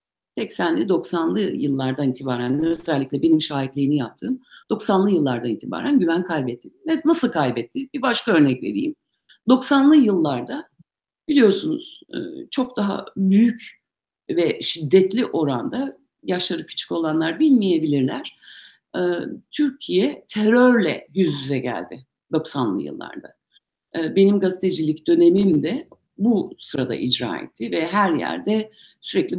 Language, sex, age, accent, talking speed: Turkish, female, 60-79, native, 100 wpm